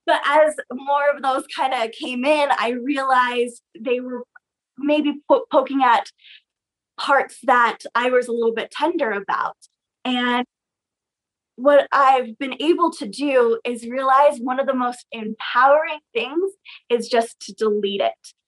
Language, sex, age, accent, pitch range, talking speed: English, female, 20-39, American, 220-275 Hz, 145 wpm